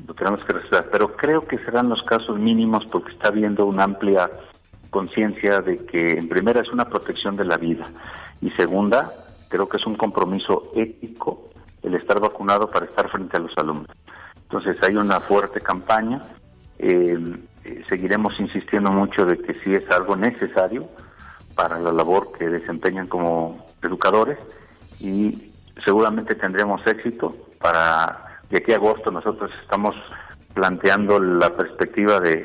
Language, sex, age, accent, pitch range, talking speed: Spanish, male, 50-69, Mexican, 90-105 Hz, 150 wpm